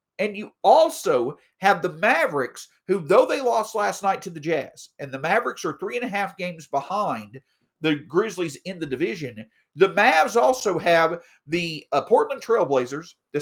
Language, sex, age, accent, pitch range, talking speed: English, male, 50-69, American, 160-245 Hz, 175 wpm